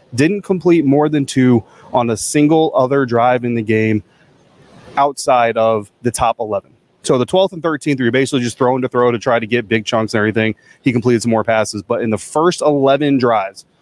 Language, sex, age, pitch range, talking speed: English, male, 30-49, 115-145 Hz, 210 wpm